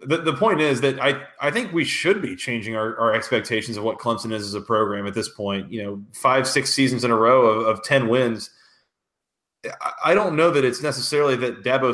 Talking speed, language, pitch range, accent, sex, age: 225 wpm, English, 115-135 Hz, American, male, 30-49